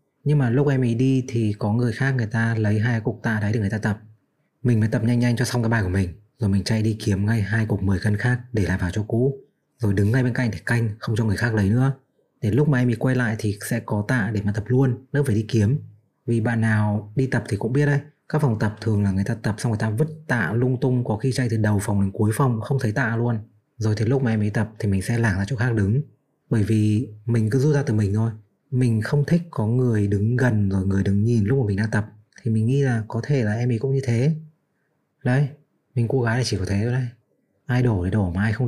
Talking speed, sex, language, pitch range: 290 wpm, male, Vietnamese, 105-125 Hz